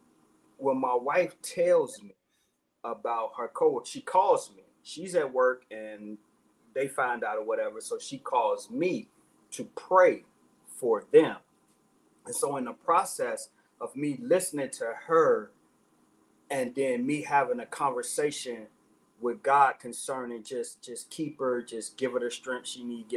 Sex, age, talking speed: male, 30-49, 150 wpm